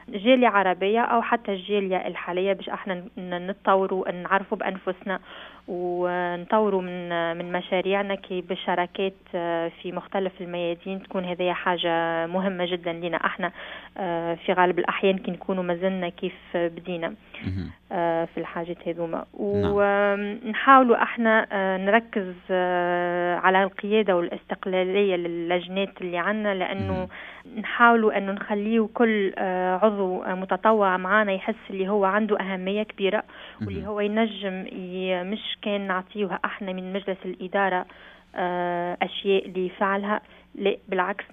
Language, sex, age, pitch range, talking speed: Arabic, female, 20-39, 180-210 Hz, 110 wpm